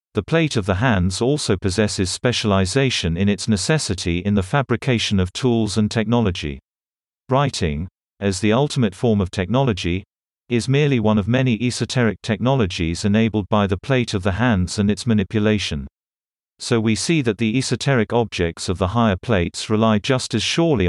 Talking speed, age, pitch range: 165 wpm, 50-69, 95-120 Hz